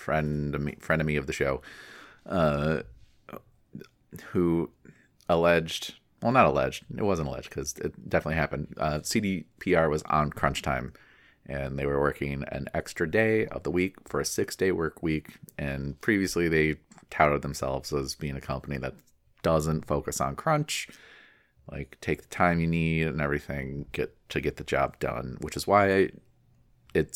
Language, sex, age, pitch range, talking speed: English, male, 30-49, 70-85 Hz, 165 wpm